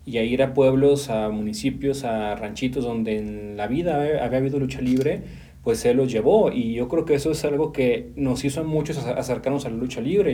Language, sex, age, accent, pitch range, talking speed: Spanish, male, 30-49, Mexican, 120-140 Hz, 225 wpm